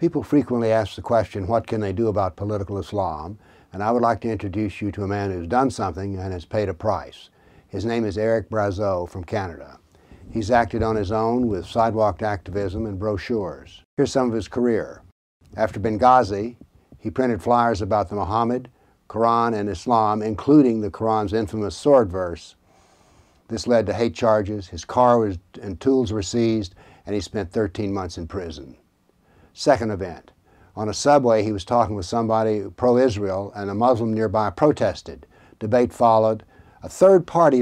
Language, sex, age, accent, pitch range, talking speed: English, male, 60-79, American, 100-115 Hz, 170 wpm